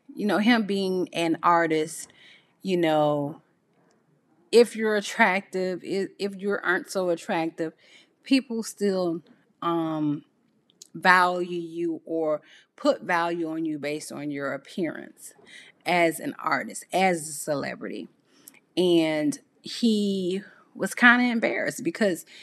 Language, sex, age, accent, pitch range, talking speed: English, female, 30-49, American, 160-195 Hz, 115 wpm